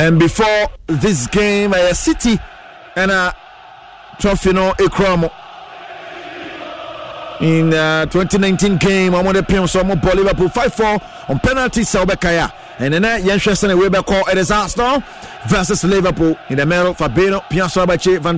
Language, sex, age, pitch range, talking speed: English, male, 30-49, 170-195 Hz, 150 wpm